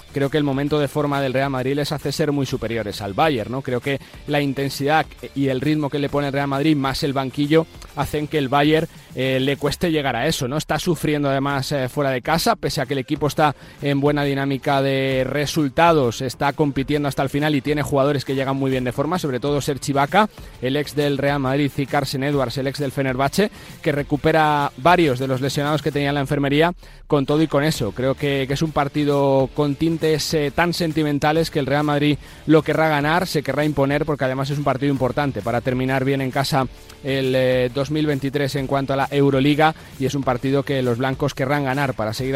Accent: Spanish